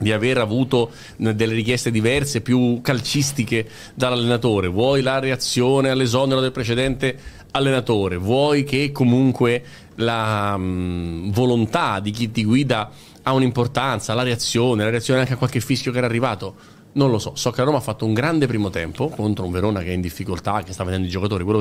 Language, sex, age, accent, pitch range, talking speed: Italian, male, 30-49, native, 95-130 Hz, 180 wpm